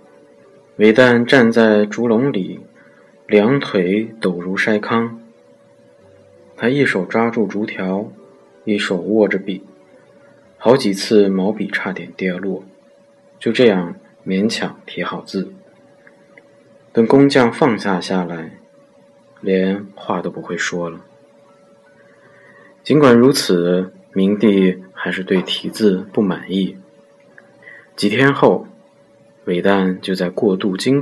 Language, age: Chinese, 20-39